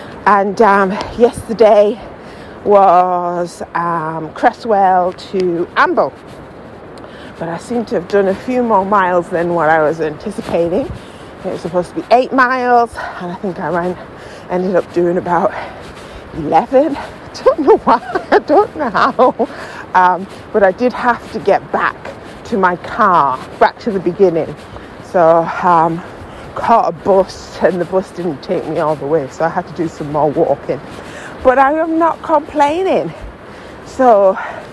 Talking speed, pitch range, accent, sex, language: 155 wpm, 175-250 Hz, British, female, English